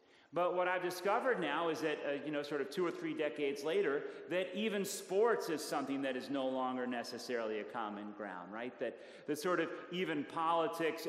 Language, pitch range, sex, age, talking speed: English, 135-180 Hz, male, 40-59, 200 wpm